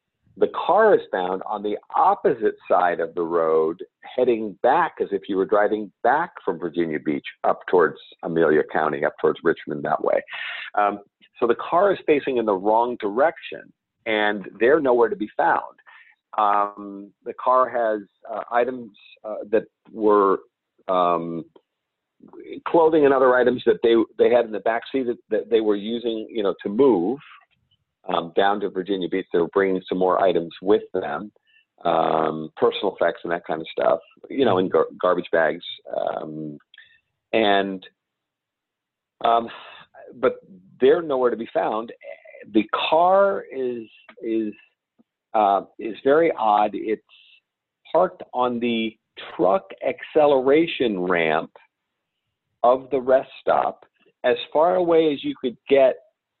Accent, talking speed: American, 150 wpm